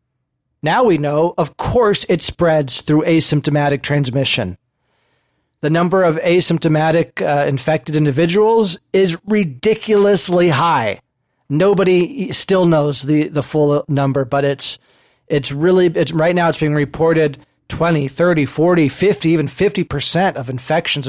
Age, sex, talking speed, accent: 30-49, male, 125 wpm, American